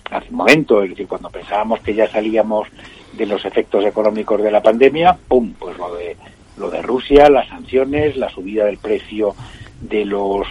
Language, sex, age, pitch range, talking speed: Spanish, male, 60-79, 105-165 Hz, 185 wpm